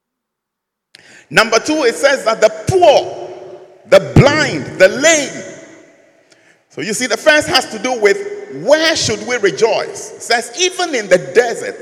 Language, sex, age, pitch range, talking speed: English, male, 50-69, 235-380 Hz, 150 wpm